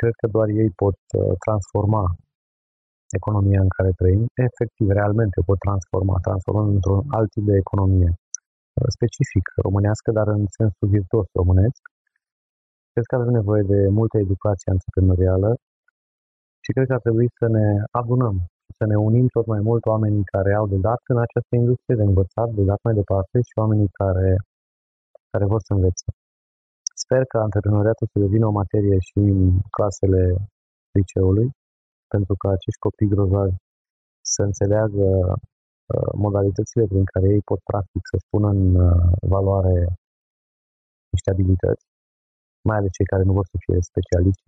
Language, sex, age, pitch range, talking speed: Romanian, male, 30-49, 95-110 Hz, 150 wpm